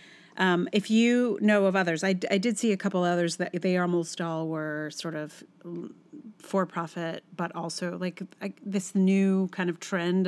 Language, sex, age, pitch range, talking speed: English, female, 40-59, 170-215 Hz, 175 wpm